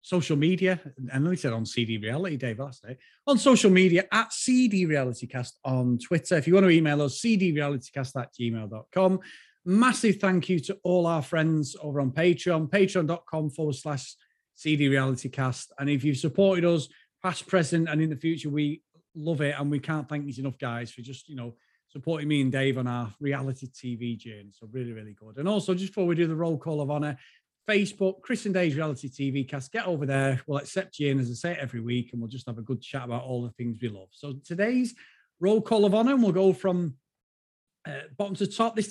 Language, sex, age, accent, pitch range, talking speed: English, male, 30-49, British, 135-190 Hz, 215 wpm